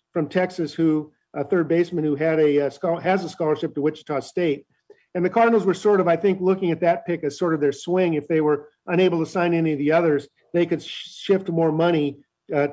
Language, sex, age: English, male, 50-69